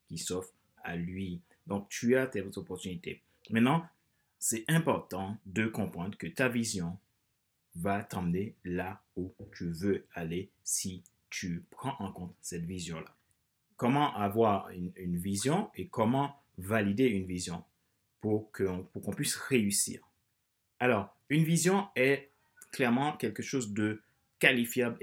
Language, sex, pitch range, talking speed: French, male, 100-130 Hz, 135 wpm